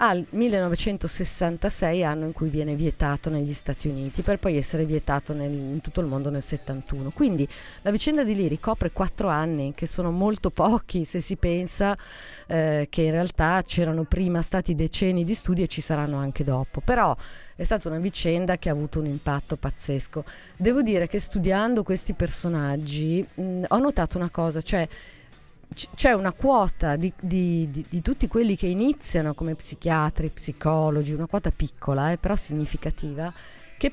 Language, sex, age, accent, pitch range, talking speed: Italian, female, 30-49, native, 155-185 Hz, 170 wpm